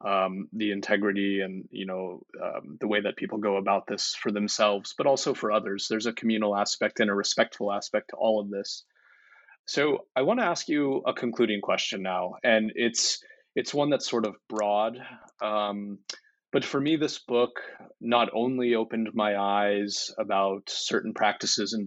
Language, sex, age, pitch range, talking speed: English, male, 20-39, 100-110 Hz, 180 wpm